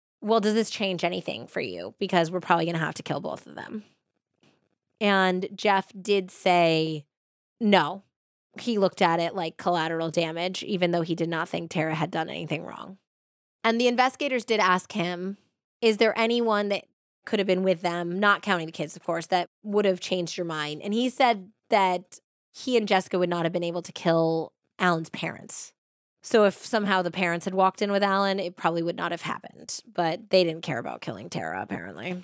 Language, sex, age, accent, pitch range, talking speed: English, female, 20-39, American, 175-215 Hz, 200 wpm